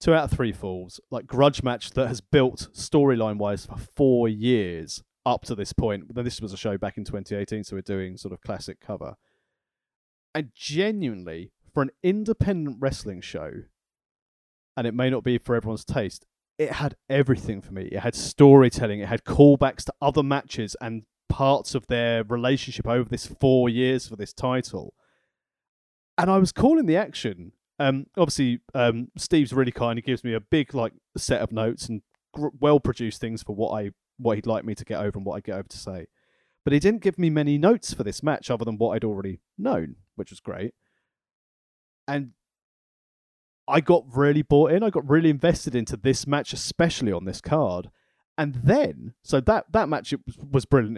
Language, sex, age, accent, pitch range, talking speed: English, male, 30-49, British, 110-140 Hz, 190 wpm